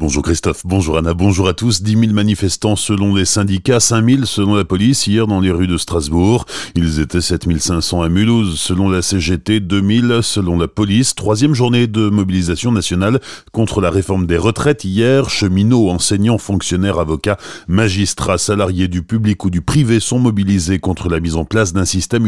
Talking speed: 185 wpm